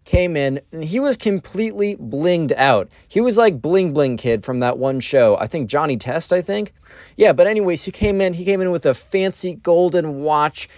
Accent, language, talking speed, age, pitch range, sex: American, English, 210 wpm, 20-39, 115-180 Hz, male